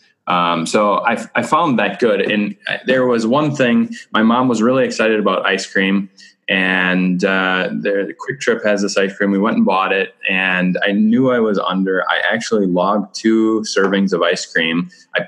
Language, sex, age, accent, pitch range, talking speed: English, male, 10-29, American, 90-105 Hz, 190 wpm